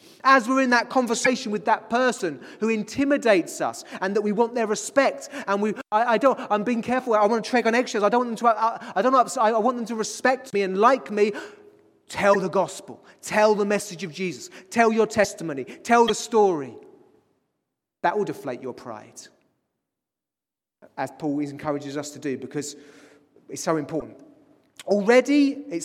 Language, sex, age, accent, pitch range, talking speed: English, male, 30-49, British, 175-240 Hz, 185 wpm